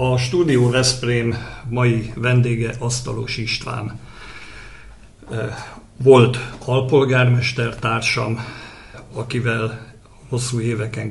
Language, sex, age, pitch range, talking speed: Hungarian, male, 50-69, 110-125 Hz, 70 wpm